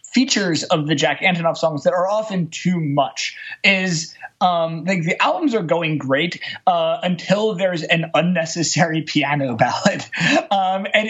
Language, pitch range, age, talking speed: English, 160-205 Hz, 20-39, 150 wpm